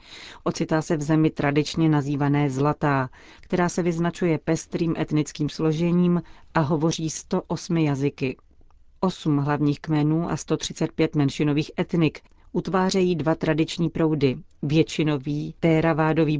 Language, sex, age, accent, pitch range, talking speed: Czech, female, 40-59, native, 145-170 Hz, 115 wpm